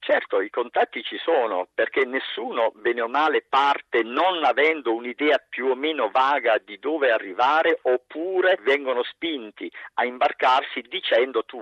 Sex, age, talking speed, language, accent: male, 50-69, 145 wpm, Italian, native